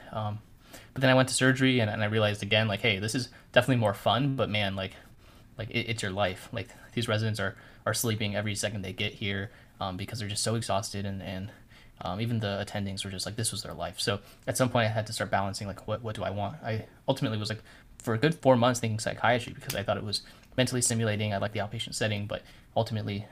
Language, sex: English, male